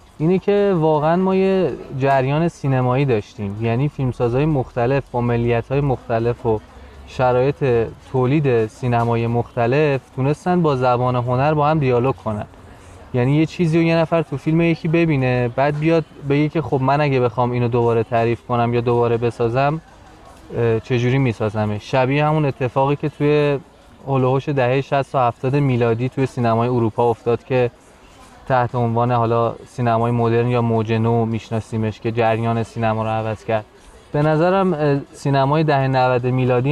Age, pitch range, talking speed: 20-39, 115-145 Hz, 150 wpm